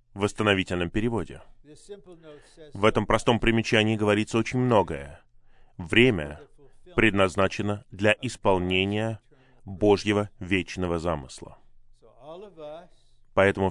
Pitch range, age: 100-140 Hz, 20-39